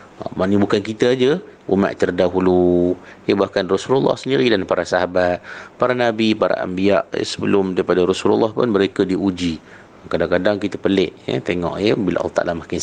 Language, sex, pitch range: Malay, male, 90-110 Hz